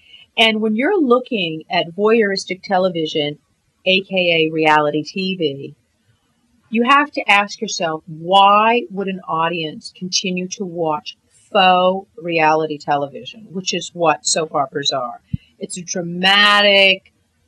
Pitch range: 155-205 Hz